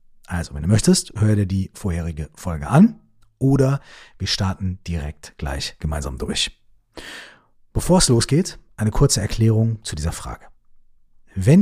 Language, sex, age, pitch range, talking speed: German, male, 40-59, 85-125 Hz, 140 wpm